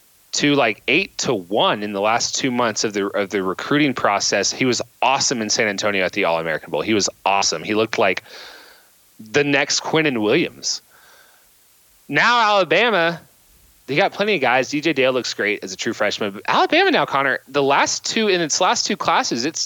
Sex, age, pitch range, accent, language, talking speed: male, 30-49, 125-170 Hz, American, English, 200 wpm